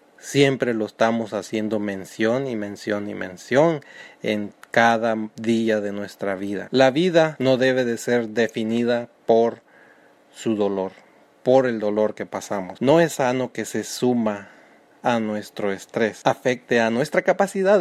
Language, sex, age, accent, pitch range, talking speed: Spanish, male, 30-49, Mexican, 110-135 Hz, 145 wpm